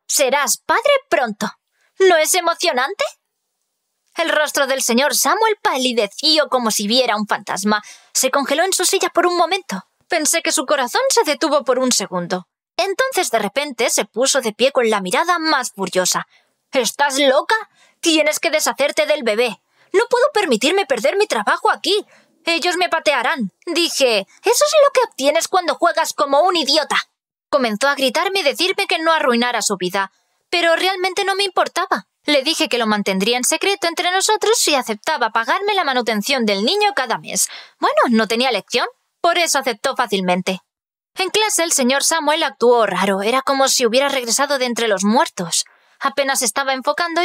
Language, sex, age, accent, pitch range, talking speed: Spanish, female, 20-39, Spanish, 235-335 Hz, 170 wpm